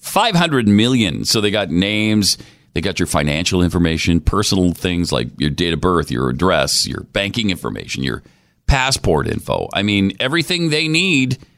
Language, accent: English, American